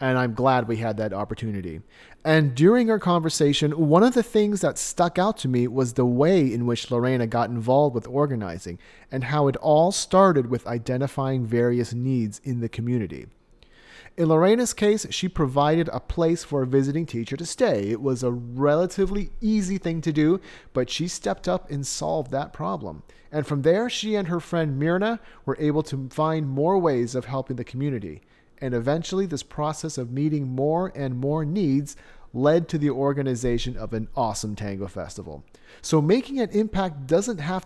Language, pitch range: English, 120-165 Hz